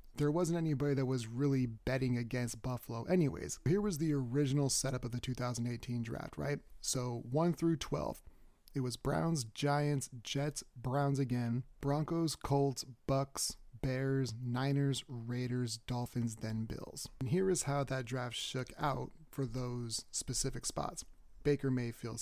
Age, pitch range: 30-49, 120-140 Hz